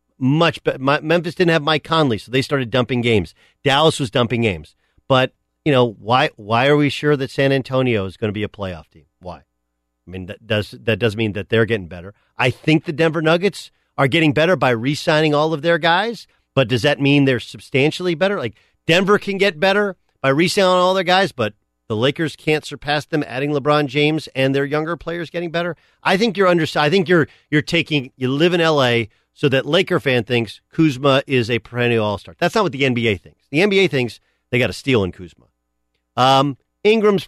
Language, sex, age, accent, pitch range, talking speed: English, male, 40-59, American, 115-165 Hz, 215 wpm